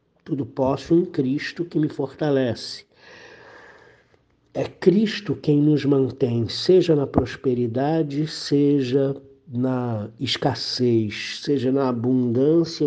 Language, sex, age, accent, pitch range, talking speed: Portuguese, male, 60-79, Brazilian, 120-150 Hz, 100 wpm